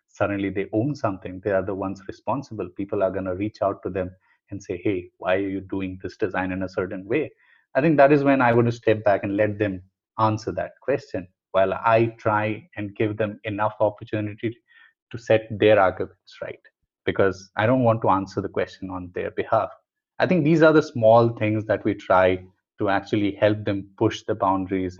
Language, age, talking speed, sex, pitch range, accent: English, 30-49, 210 wpm, male, 95-120 Hz, Indian